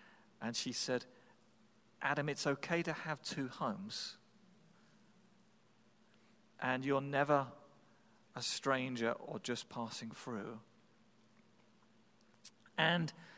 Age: 40-59